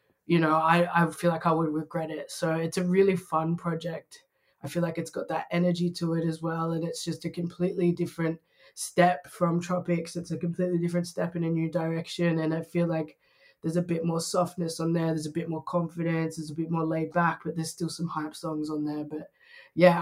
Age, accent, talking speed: 20-39, Australian, 230 wpm